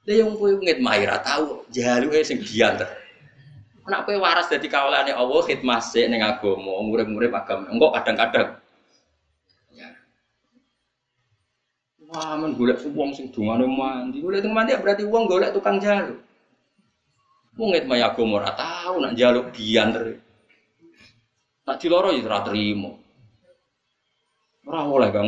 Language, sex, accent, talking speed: Indonesian, male, native, 130 wpm